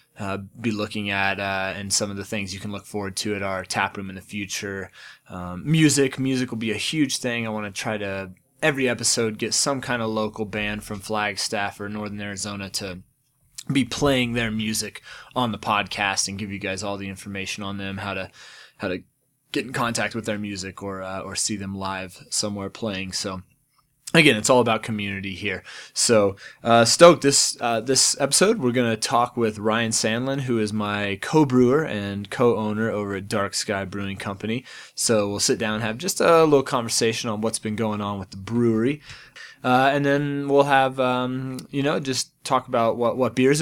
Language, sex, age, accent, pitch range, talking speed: English, male, 20-39, American, 100-130 Hz, 205 wpm